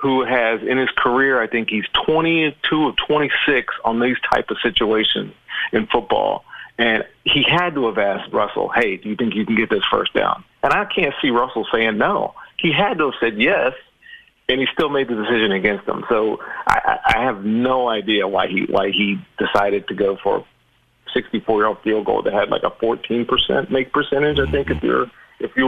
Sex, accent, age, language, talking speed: male, American, 40-59, English, 200 wpm